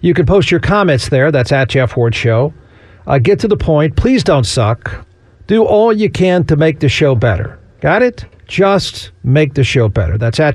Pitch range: 125-175 Hz